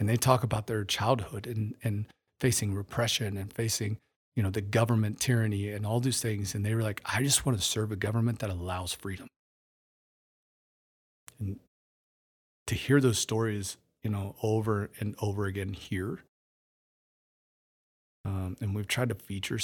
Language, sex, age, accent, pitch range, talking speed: English, male, 40-59, American, 95-110 Hz, 160 wpm